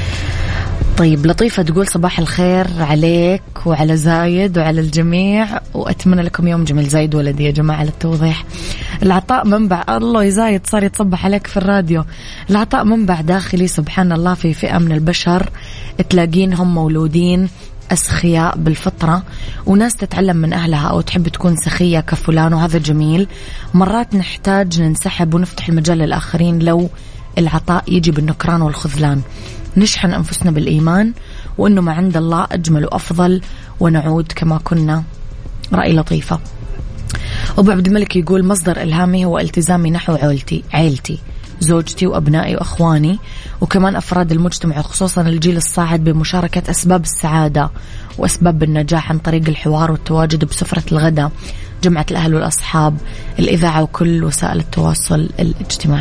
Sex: female